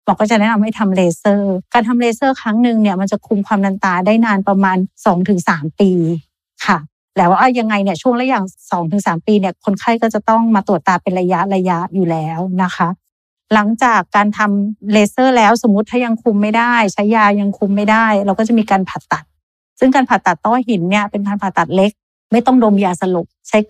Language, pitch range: Thai, 185-225 Hz